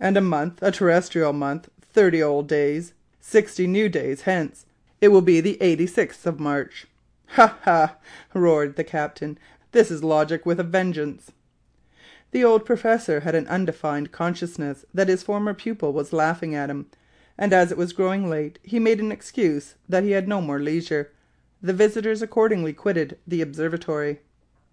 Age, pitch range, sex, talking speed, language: 40-59, 155-205 Hz, female, 165 wpm, English